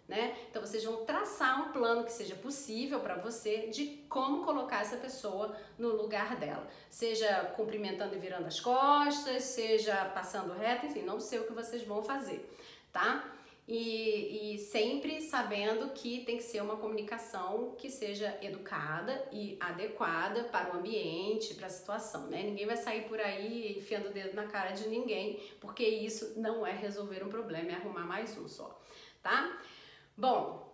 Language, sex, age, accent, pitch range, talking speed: Portuguese, female, 40-59, Brazilian, 205-270 Hz, 170 wpm